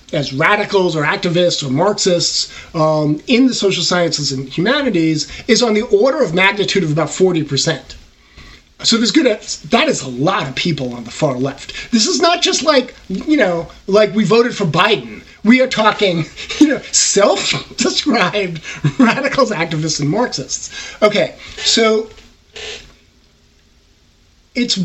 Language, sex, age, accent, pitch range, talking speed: English, male, 30-49, American, 150-205 Hz, 145 wpm